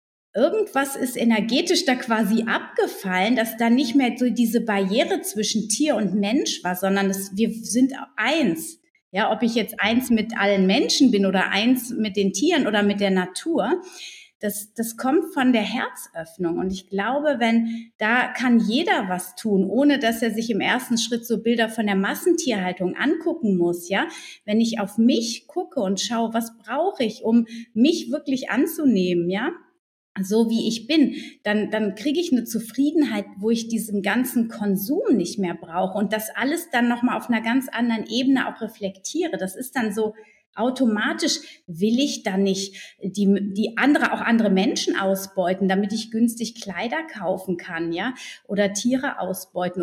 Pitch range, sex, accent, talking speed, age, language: 200-265 Hz, female, German, 170 wpm, 30-49, German